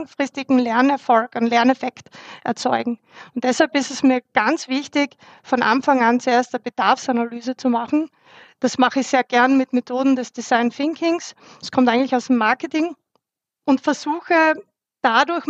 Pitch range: 235-275 Hz